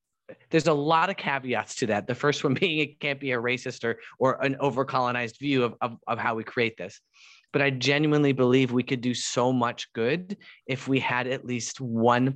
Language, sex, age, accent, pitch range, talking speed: English, male, 30-49, American, 110-135 Hz, 220 wpm